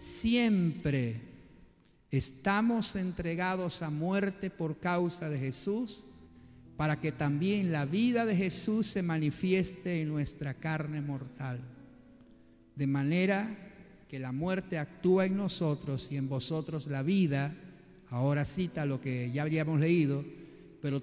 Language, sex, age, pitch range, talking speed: Spanish, male, 50-69, 135-185 Hz, 125 wpm